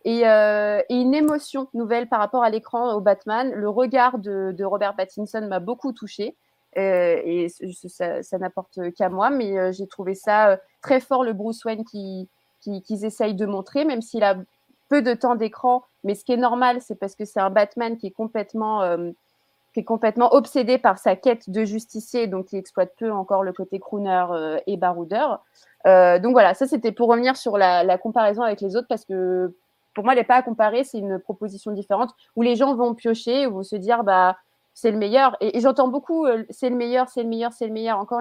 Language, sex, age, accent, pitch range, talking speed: French, female, 30-49, French, 195-240 Hz, 210 wpm